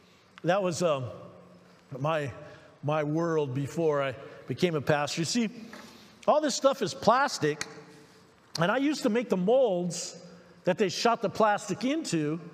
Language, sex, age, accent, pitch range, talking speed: English, male, 50-69, American, 165-205 Hz, 150 wpm